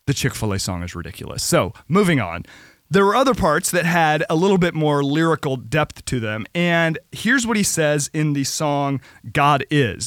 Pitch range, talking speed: 130-160 Hz, 190 wpm